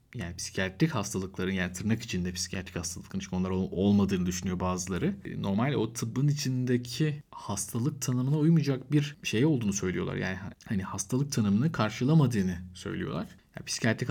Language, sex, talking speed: Turkish, male, 135 wpm